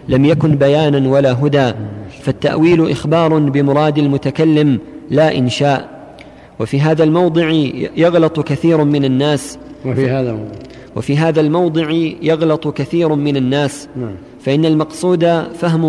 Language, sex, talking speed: Arabic, male, 110 wpm